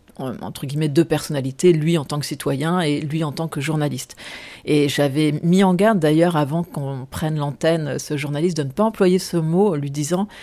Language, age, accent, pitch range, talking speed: French, 40-59, French, 140-170 Hz, 205 wpm